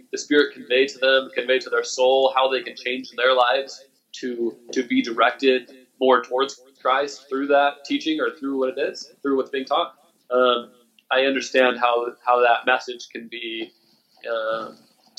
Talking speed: 175 wpm